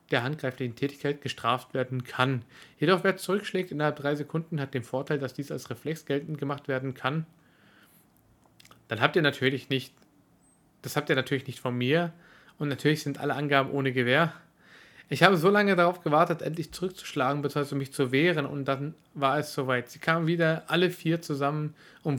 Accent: German